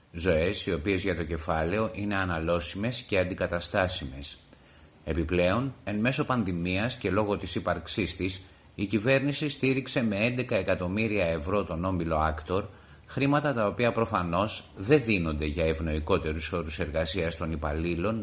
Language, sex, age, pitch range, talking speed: Greek, male, 30-49, 80-105 Hz, 135 wpm